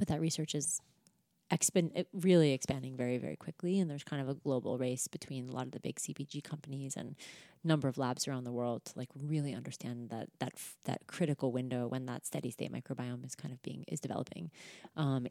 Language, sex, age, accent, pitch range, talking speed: English, female, 30-49, American, 130-155 Hz, 215 wpm